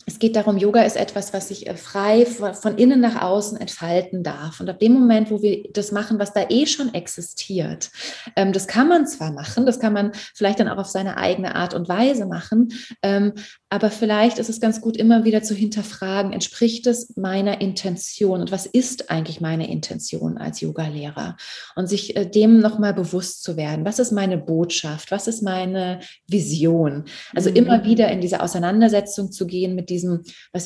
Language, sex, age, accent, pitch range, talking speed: German, female, 30-49, German, 180-215 Hz, 185 wpm